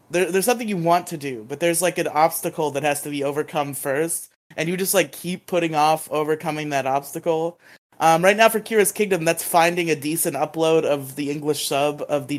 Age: 20-39